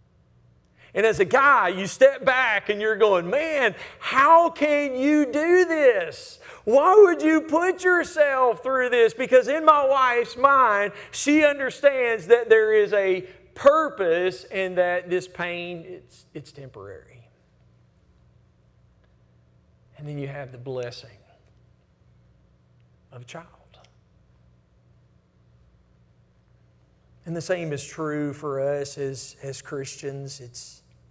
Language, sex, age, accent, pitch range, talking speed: English, male, 40-59, American, 135-210 Hz, 120 wpm